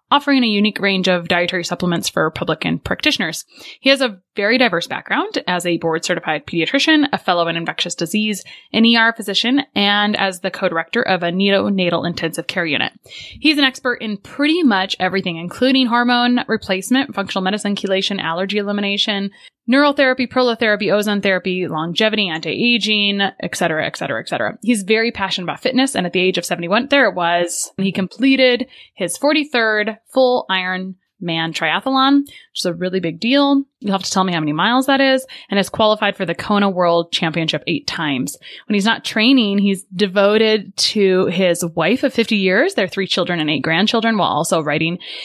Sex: female